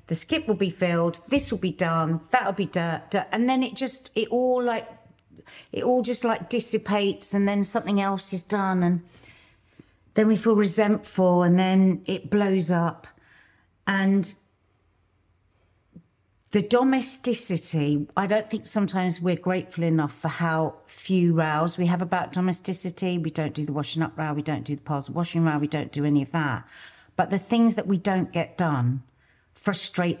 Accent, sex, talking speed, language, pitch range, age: British, female, 175 wpm, English, 150-200 Hz, 50-69